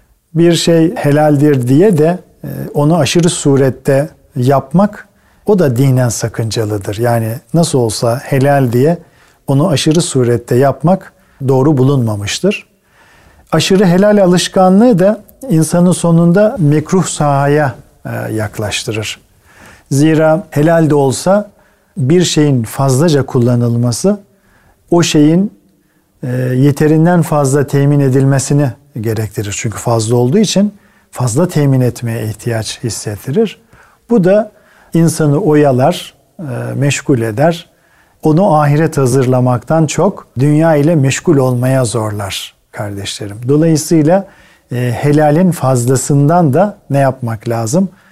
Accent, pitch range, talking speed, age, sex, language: native, 125-170 Hz, 100 wpm, 50-69, male, Turkish